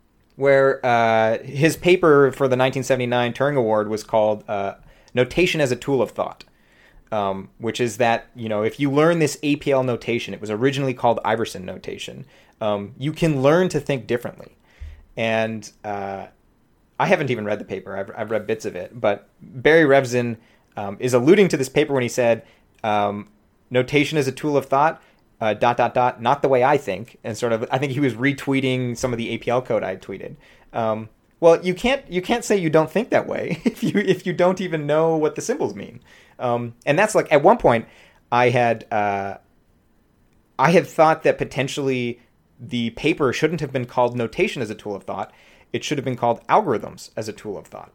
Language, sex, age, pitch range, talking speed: English, male, 30-49, 115-145 Hz, 205 wpm